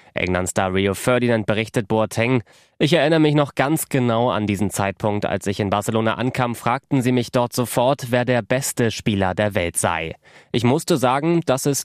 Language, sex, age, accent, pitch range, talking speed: German, male, 20-39, German, 100-125 Hz, 180 wpm